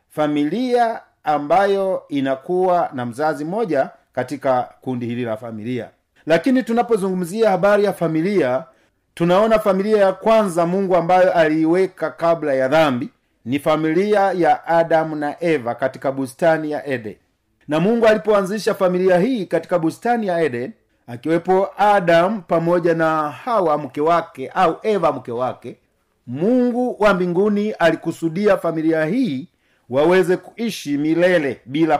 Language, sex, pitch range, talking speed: Swahili, male, 150-200 Hz, 125 wpm